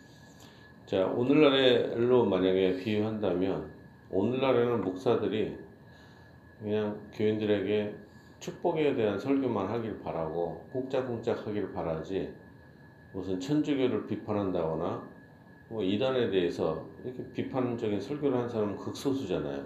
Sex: male